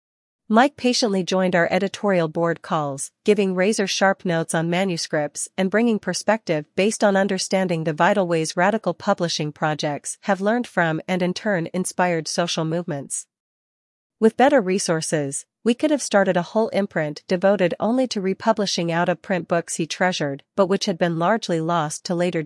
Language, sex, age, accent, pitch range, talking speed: English, female, 40-59, American, 165-200 Hz, 160 wpm